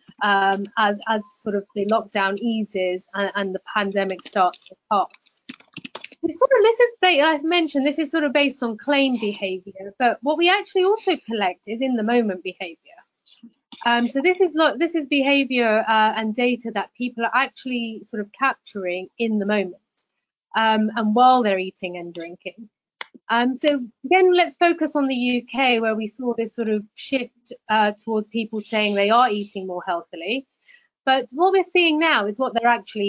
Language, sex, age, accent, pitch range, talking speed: English, female, 30-49, British, 210-275 Hz, 185 wpm